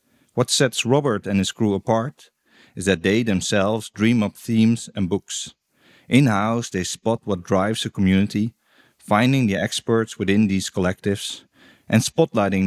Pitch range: 95-120 Hz